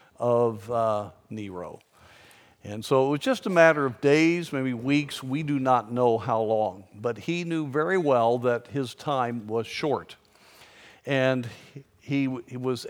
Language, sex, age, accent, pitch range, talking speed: English, male, 50-69, American, 125-160 Hz, 160 wpm